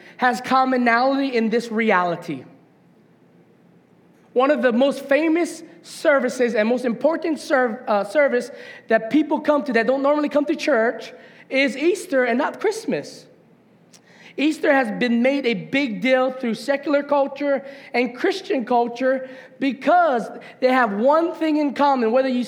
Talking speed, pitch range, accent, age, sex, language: 140 wpm, 240-320 Hz, American, 20-39, male, English